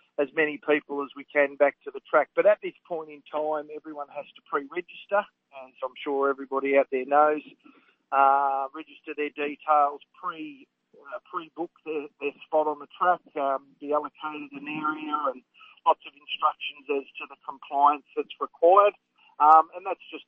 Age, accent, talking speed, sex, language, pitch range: 40-59, Australian, 180 wpm, male, English, 145-165 Hz